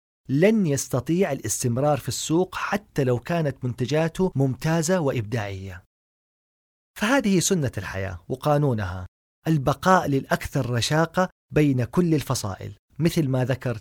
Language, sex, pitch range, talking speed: Arabic, male, 115-175 Hz, 105 wpm